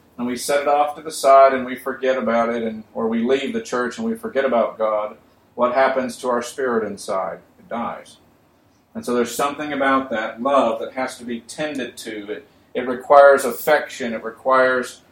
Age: 40-59